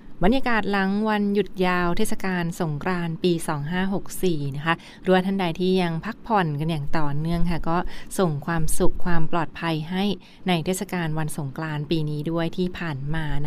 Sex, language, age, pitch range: female, Thai, 20-39, 165-195 Hz